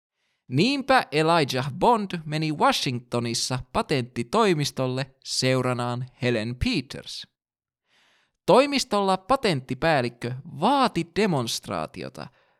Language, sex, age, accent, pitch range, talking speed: Finnish, male, 20-39, native, 125-195 Hz, 60 wpm